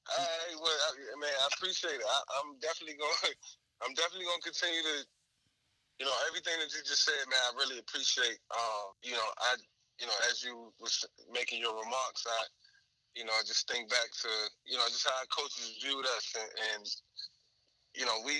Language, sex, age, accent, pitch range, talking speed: English, male, 20-39, American, 115-170 Hz, 200 wpm